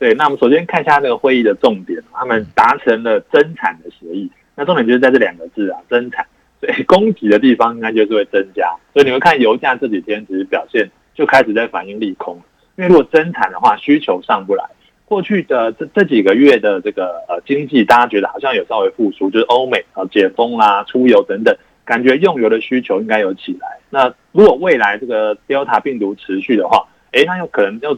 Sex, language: male, Chinese